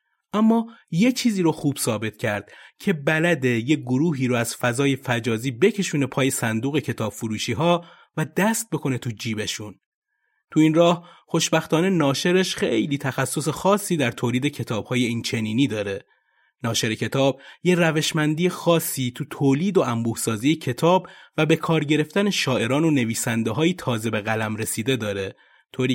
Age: 30-49